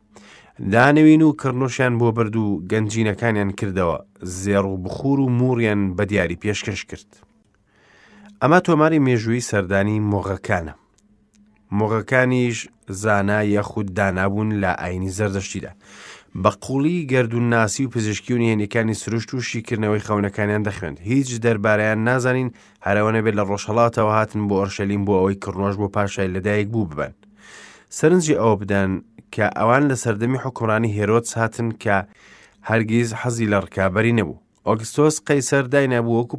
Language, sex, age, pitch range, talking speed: English, male, 30-49, 105-125 Hz, 125 wpm